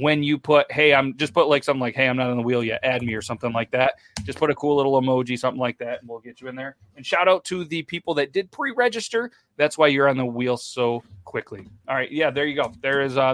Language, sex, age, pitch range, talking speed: English, male, 30-49, 125-160 Hz, 290 wpm